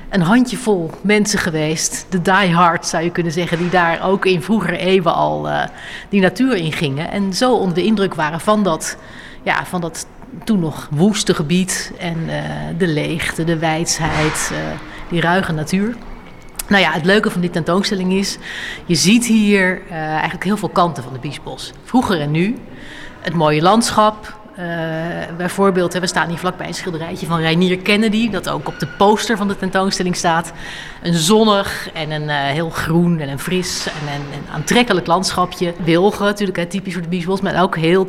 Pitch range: 165-195 Hz